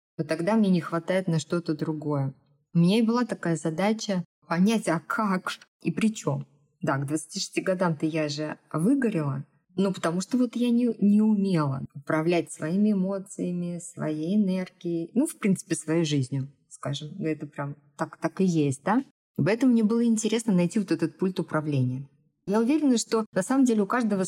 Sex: female